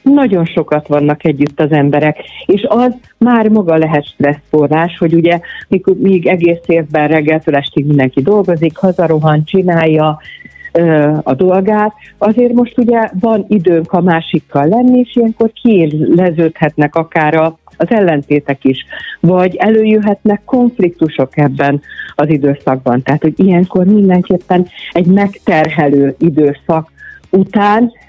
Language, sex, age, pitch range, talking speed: Hungarian, female, 50-69, 150-195 Hz, 125 wpm